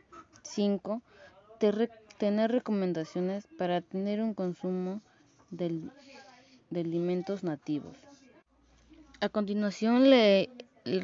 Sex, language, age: female, English, 20-39